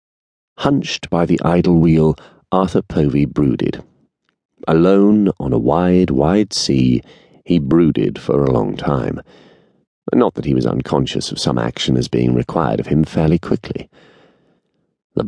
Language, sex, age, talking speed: English, male, 40-59, 140 wpm